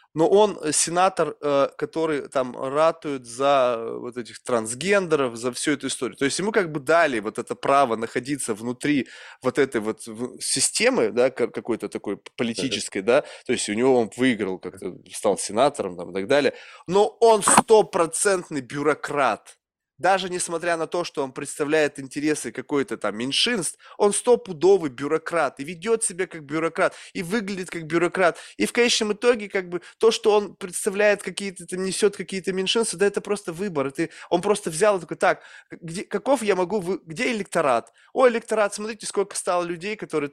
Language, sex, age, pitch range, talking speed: Russian, male, 20-39, 140-200 Hz, 165 wpm